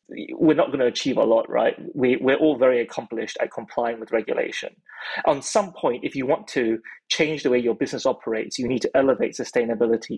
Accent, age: British, 30-49